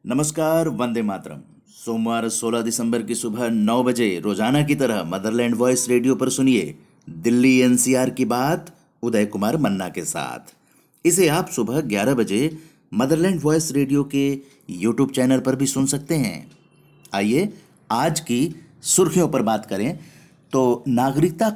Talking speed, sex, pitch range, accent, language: 140 wpm, male, 115-155 Hz, native, Hindi